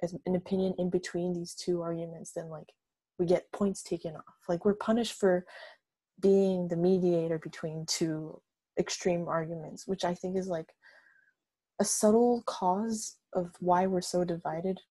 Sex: female